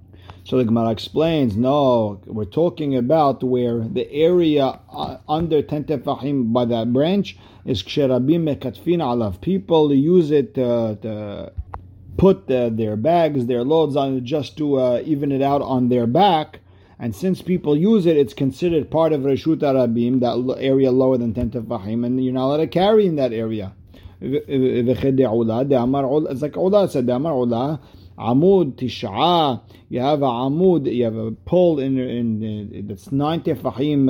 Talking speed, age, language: 145 wpm, 50-69, English